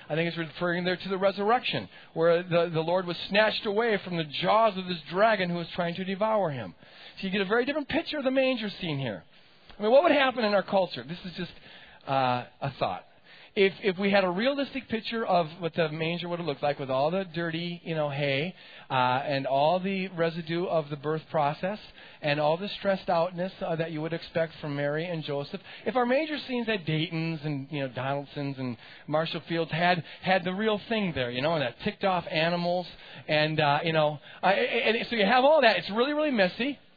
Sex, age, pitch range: male, 40-59, 165-230 Hz